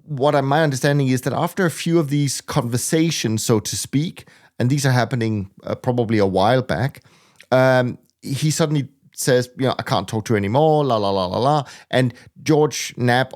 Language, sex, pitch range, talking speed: English, male, 110-140 Hz, 195 wpm